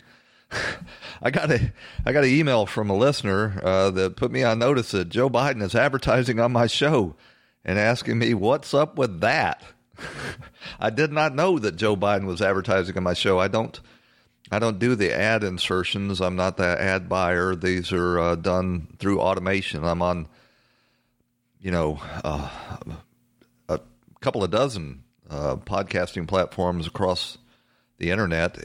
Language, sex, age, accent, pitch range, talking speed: English, male, 40-59, American, 90-110 Hz, 160 wpm